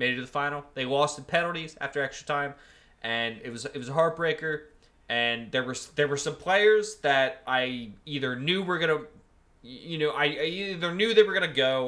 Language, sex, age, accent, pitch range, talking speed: English, male, 20-39, American, 125-165 Hz, 205 wpm